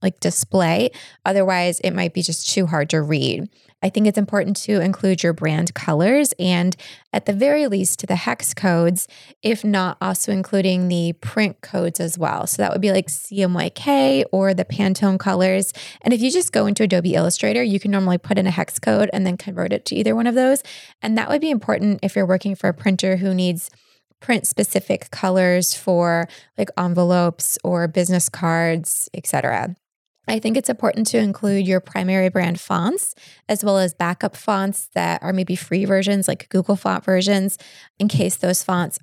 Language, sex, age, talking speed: English, female, 20-39, 190 wpm